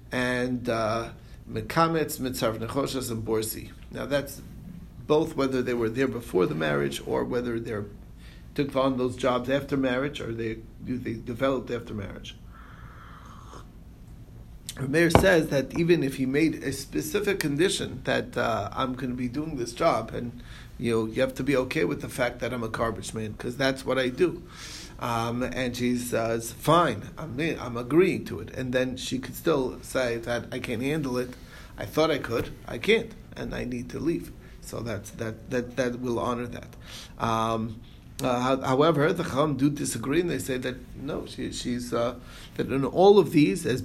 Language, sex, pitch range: English, male, 120-135 Hz